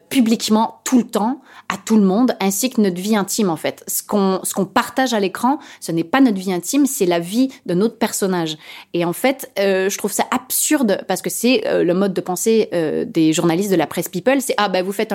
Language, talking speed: French, 255 wpm